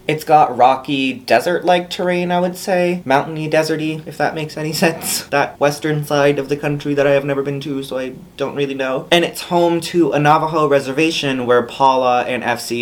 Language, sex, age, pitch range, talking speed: English, male, 30-49, 120-145 Hz, 200 wpm